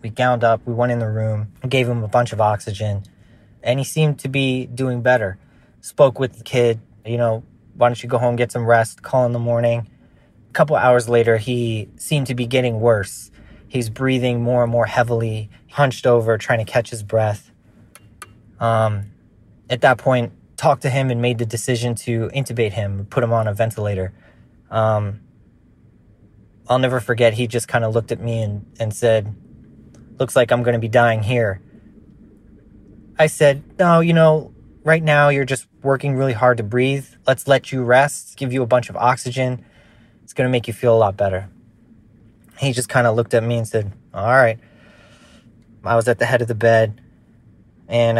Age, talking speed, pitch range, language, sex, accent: 20-39, 190 wpm, 110-125 Hz, English, male, American